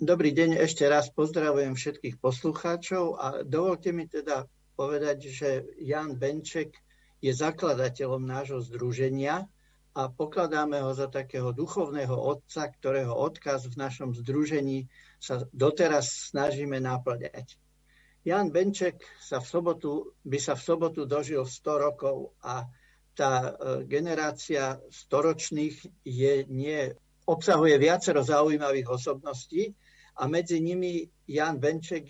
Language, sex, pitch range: Slovak, male, 135-160 Hz